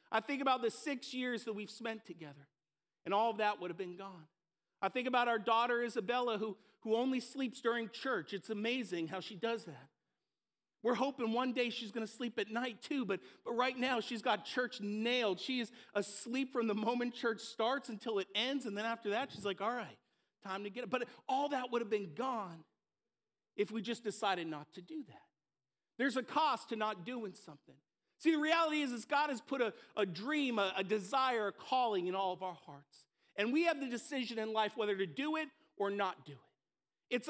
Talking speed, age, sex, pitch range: 220 wpm, 50-69, male, 205-260 Hz